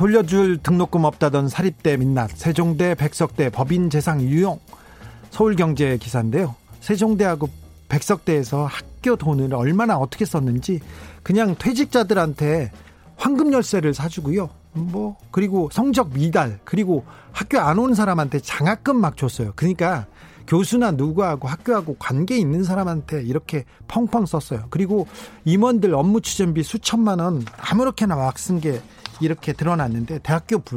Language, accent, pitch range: Korean, native, 140-205 Hz